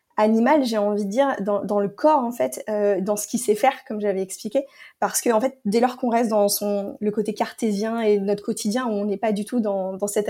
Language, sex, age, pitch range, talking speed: French, female, 20-39, 205-240 Hz, 260 wpm